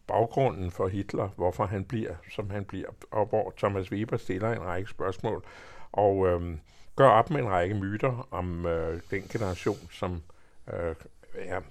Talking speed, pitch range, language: 150 wpm, 90-110 Hz, Danish